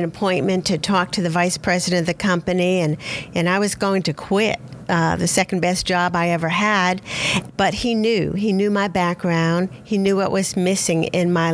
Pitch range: 170-195 Hz